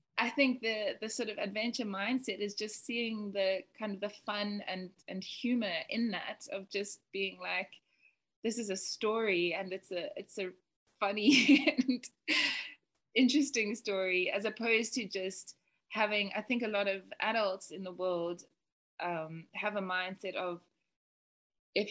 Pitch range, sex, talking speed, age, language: 190-220 Hz, female, 160 wpm, 20-39, English